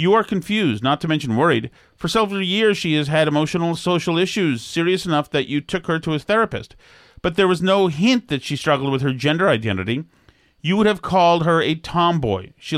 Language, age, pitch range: English, 40-59, 140-180 Hz